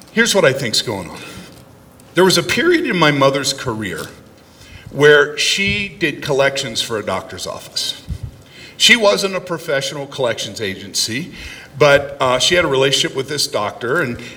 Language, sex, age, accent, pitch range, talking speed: English, male, 50-69, American, 130-175 Hz, 160 wpm